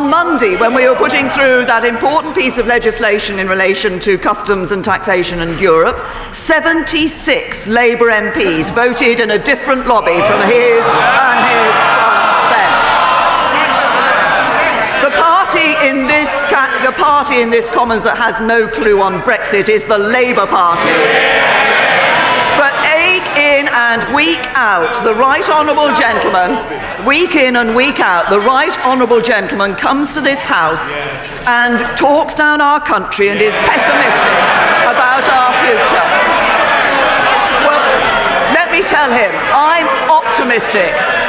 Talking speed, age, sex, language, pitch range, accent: 130 wpm, 40-59, female, English, 230-290 Hz, British